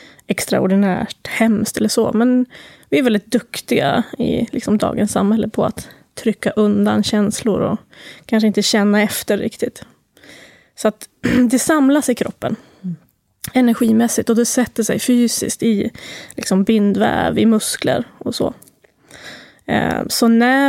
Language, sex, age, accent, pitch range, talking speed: Swedish, female, 20-39, native, 210-235 Hz, 130 wpm